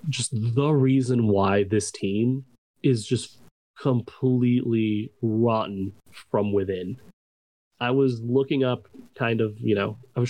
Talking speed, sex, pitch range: 130 wpm, male, 100-125 Hz